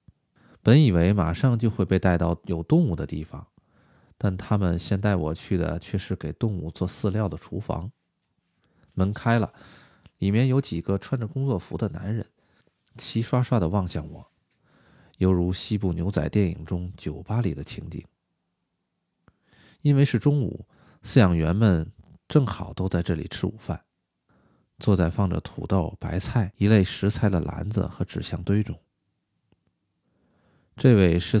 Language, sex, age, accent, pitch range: Chinese, male, 20-39, native, 90-115 Hz